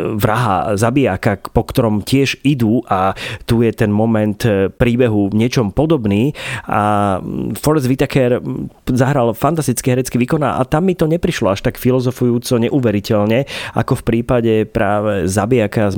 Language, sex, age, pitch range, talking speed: Slovak, male, 30-49, 100-125 Hz, 140 wpm